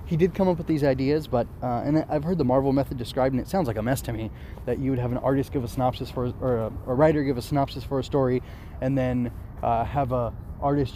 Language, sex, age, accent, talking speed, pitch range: English, male, 20-39, American, 280 wpm, 120-150 Hz